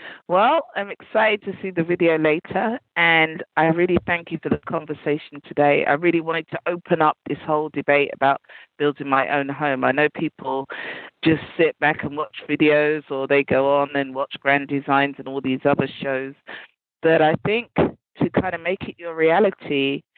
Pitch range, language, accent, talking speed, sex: 145-170 Hz, English, British, 185 wpm, female